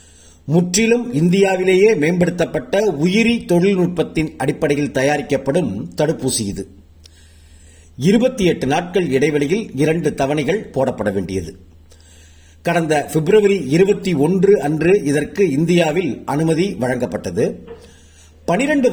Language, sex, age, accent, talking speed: Tamil, male, 50-69, native, 80 wpm